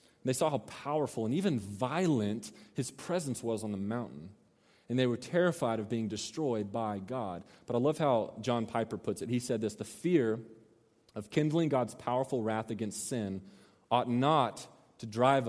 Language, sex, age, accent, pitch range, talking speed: English, male, 30-49, American, 110-180 Hz, 180 wpm